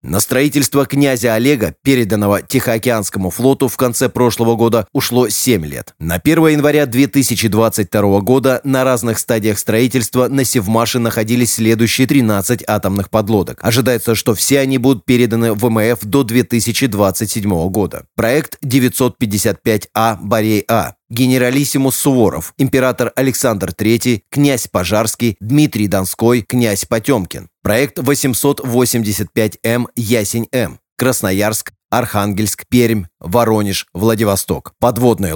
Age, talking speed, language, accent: 30-49, 110 wpm, Russian, native